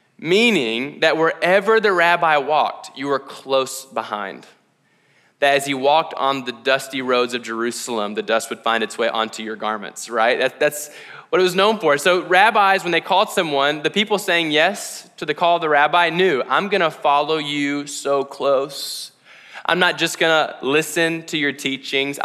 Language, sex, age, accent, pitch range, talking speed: English, male, 20-39, American, 125-165 Hz, 180 wpm